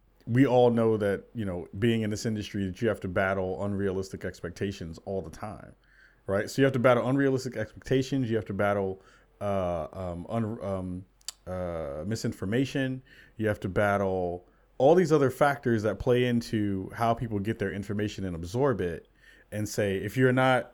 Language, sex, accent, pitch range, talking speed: English, male, American, 95-120 Hz, 180 wpm